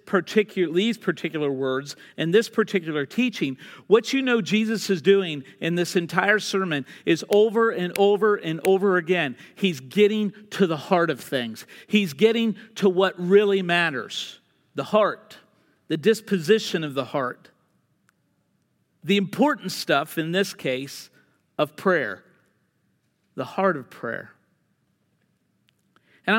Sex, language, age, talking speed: male, English, 50-69, 130 wpm